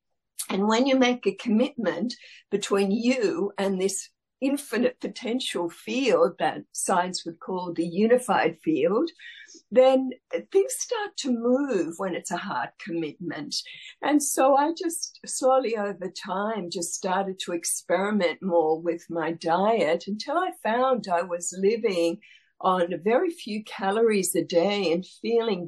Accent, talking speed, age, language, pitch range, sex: Australian, 140 wpm, 60-79, English, 175-250 Hz, female